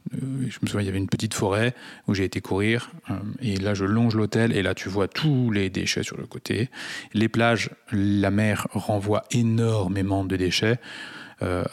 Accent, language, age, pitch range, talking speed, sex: French, French, 20-39, 100-125 Hz, 190 wpm, male